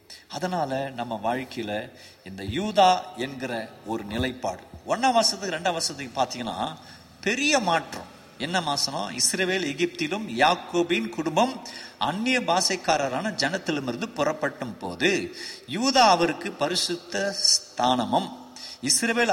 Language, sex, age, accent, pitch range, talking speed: Tamil, male, 50-69, native, 160-245 Hz, 95 wpm